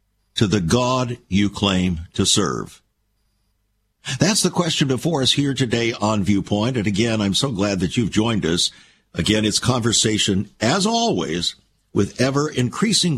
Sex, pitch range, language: male, 105-150 Hz, English